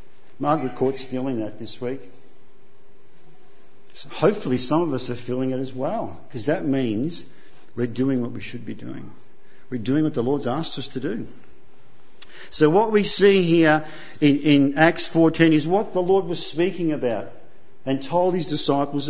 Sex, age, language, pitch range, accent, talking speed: male, 50-69, English, 125-170 Hz, Australian, 170 wpm